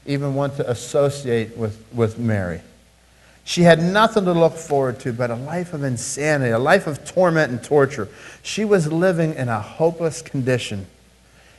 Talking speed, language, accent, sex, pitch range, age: 165 wpm, English, American, male, 125-175 Hz, 50-69